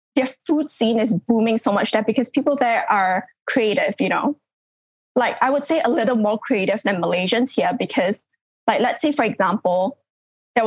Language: English